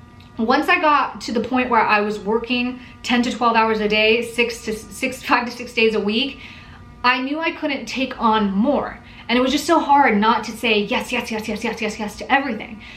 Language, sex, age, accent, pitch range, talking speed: English, female, 20-39, American, 220-255 Hz, 230 wpm